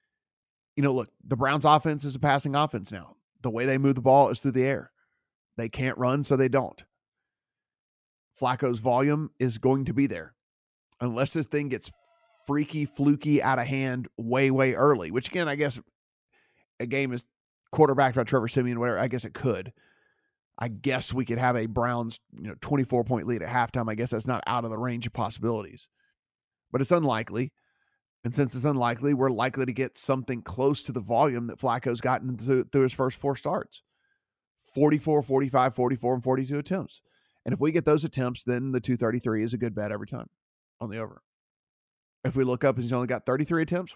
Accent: American